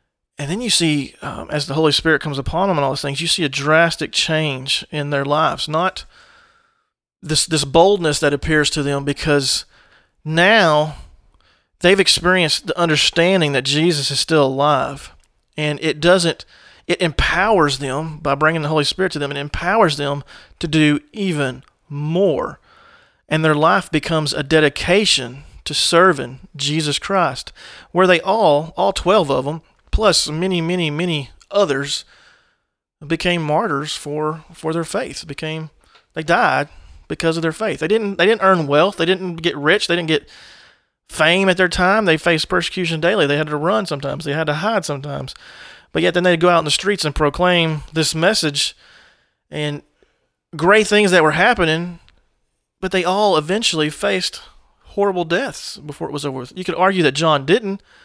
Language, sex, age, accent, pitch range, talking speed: English, male, 40-59, American, 145-180 Hz, 170 wpm